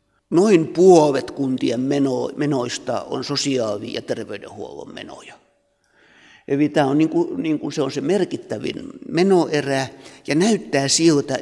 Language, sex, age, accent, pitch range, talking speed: Finnish, male, 60-79, native, 140-170 Hz, 115 wpm